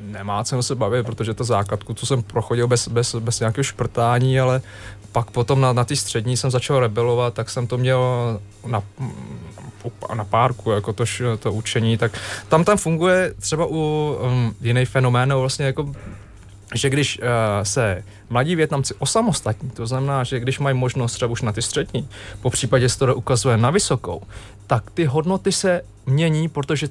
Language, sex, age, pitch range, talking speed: Czech, male, 20-39, 115-155 Hz, 175 wpm